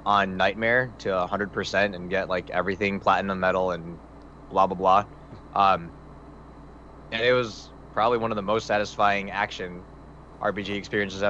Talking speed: 150 wpm